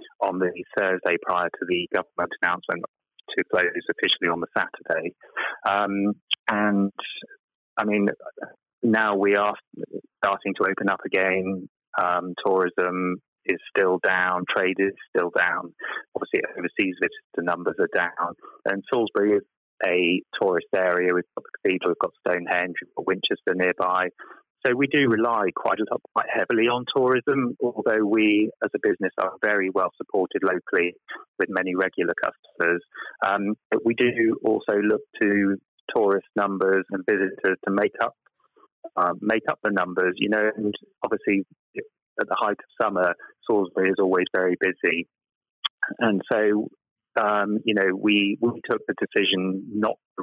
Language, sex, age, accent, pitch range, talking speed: English, male, 30-49, British, 95-125 Hz, 155 wpm